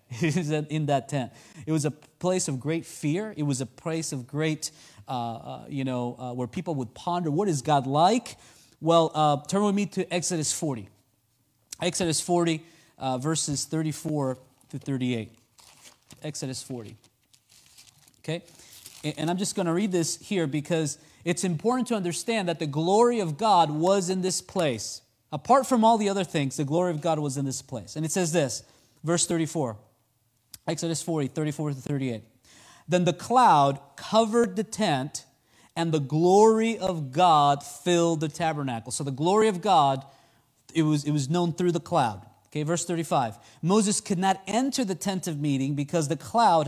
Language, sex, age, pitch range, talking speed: English, male, 30-49, 135-180 Hz, 175 wpm